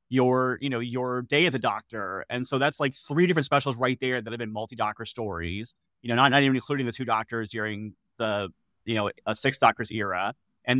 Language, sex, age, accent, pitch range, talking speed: English, male, 30-49, American, 115-140 Hz, 220 wpm